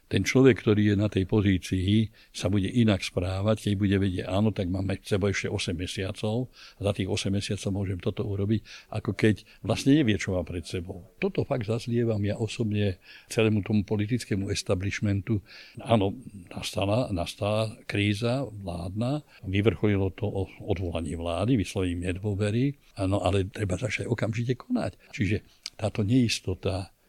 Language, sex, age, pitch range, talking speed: Slovak, male, 60-79, 95-115 Hz, 145 wpm